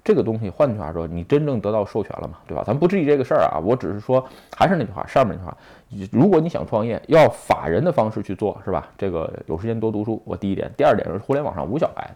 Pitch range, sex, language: 100-130 Hz, male, Chinese